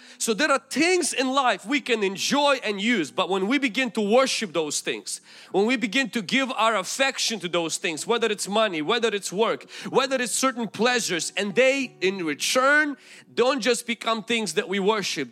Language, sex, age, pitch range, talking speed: English, male, 40-59, 190-250 Hz, 195 wpm